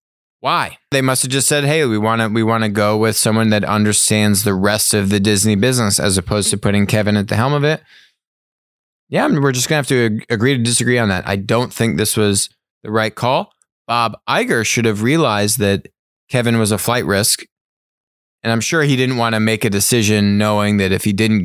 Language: English